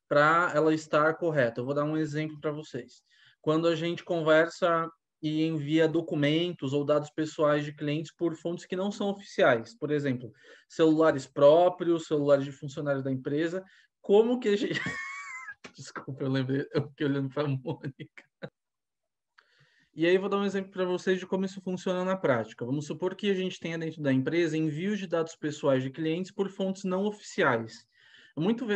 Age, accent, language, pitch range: 20-39, Brazilian, Portuguese, 145-190 Hz